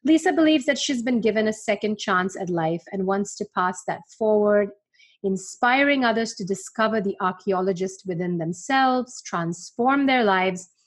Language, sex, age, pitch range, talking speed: English, female, 30-49, 195-245 Hz, 155 wpm